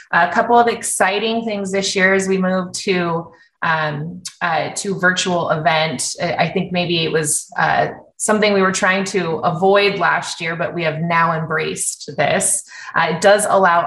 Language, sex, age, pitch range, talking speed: English, female, 20-39, 165-195 Hz, 165 wpm